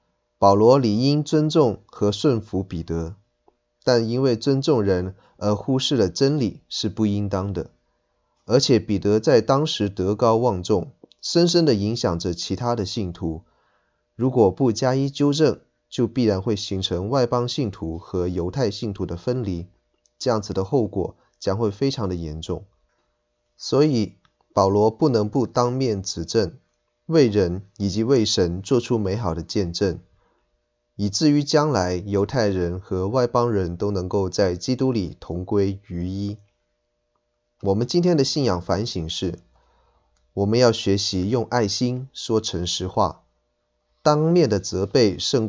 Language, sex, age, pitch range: Chinese, male, 20-39, 90-120 Hz